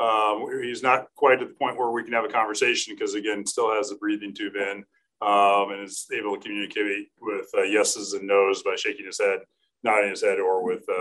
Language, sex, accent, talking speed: English, male, American, 225 wpm